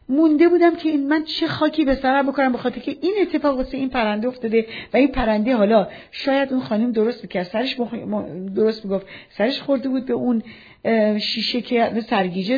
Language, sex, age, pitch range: Persian, female, 40-59, 220-280 Hz